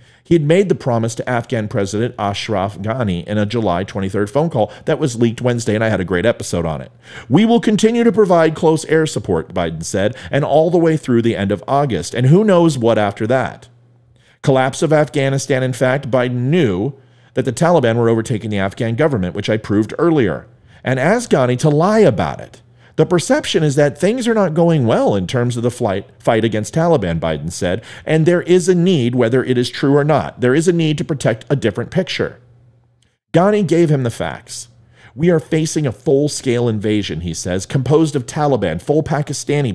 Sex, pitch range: male, 115-160 Hz